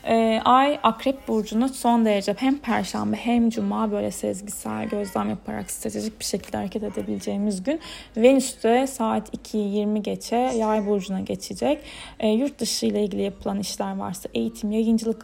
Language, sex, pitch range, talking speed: Turkish, female, 210-245 Hz, 140 wpm